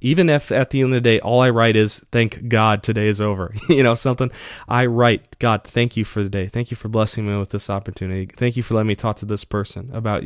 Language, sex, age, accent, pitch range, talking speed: English, male, 20-39, American, 105-120 Hz, 270 wpm